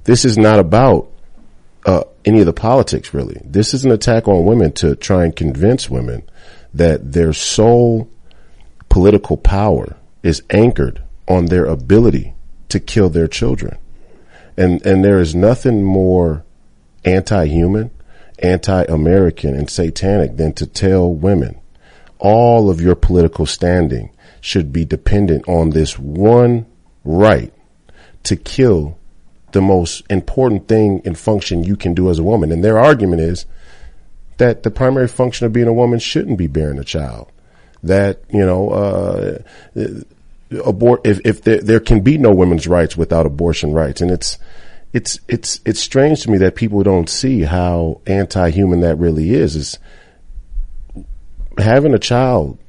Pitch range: 80-105 Hz